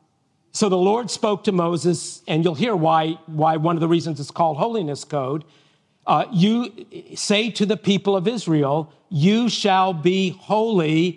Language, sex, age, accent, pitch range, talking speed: English, male, 50-69, American, 160-195 Hz, 165 wpm